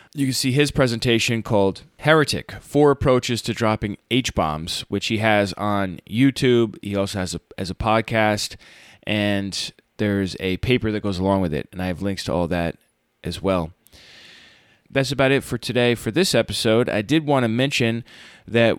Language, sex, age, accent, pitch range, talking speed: English, male, 20-39, American, 105-125 Hz, 175 wpm